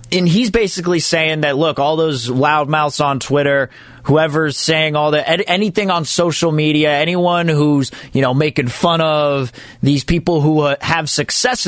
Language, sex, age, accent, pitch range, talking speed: English, male, 20-39, American, 140-180 Hz, 170 wpm